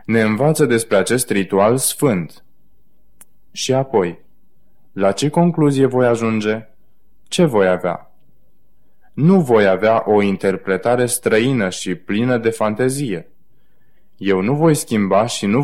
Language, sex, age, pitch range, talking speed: Romanian, male, 20-39, 100-125 Hz, 125 wpm